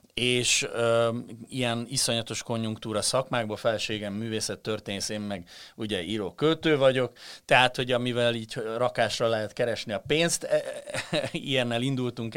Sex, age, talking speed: male, 30-49, 135 wpm